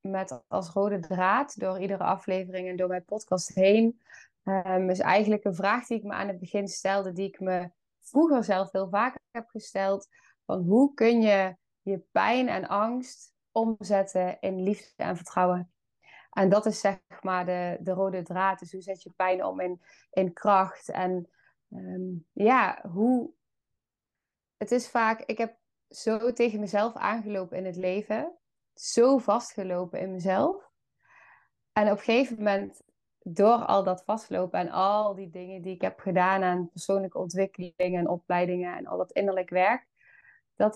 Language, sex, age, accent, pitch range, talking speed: Dutch, female, 20-39, Dutch, 185-215 Hz, 165 wpm